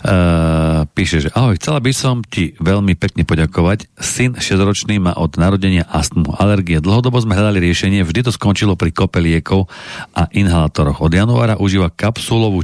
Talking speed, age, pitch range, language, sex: 155 wpm, 40-59, 85-105 Hz, Slovak, male